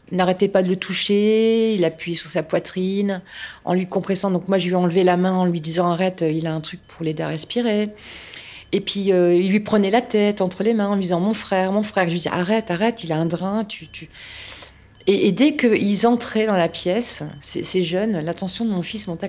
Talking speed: 245 wpm